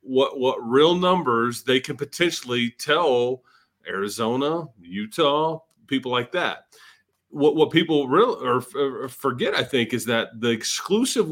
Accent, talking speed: American, 135 wpm